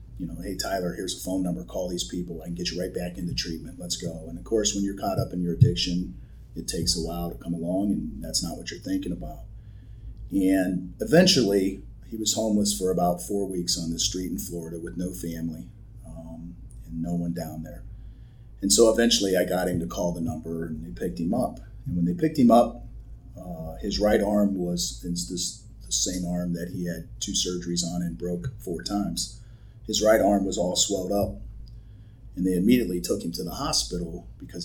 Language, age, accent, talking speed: English, 40-59, American, 215 wpm